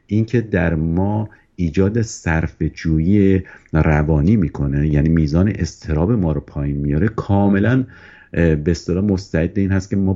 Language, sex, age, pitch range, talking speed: Persian, male, 50-69, 80-105 Hz, 130 wpm